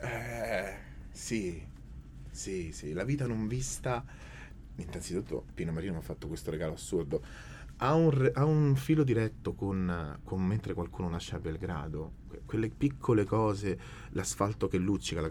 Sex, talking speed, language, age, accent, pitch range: male, 145 wpm, Italian, 30-49, native, 90-130 Hz